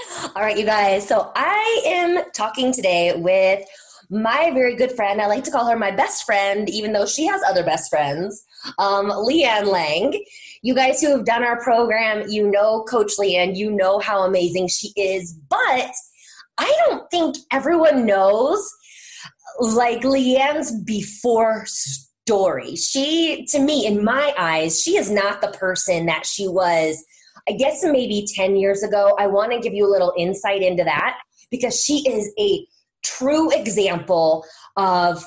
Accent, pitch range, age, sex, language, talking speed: American, 195-260 Hz, 20-39, female, English, 165 wpm